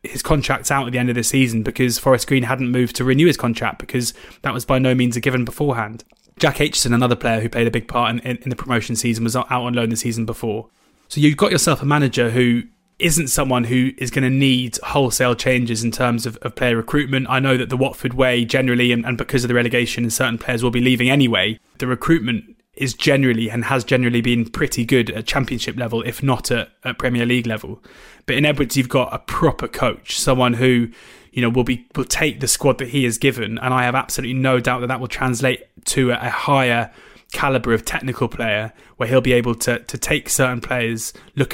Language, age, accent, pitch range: English, 20-39, British, 115-130 Hz